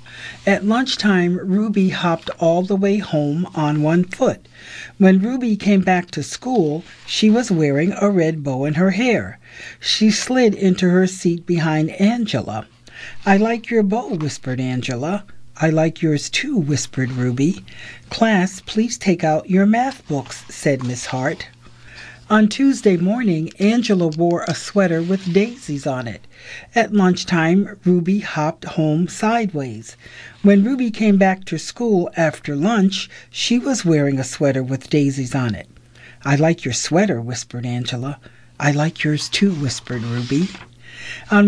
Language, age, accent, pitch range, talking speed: English, 60-79, American, 145-200 Hz, 150 wpm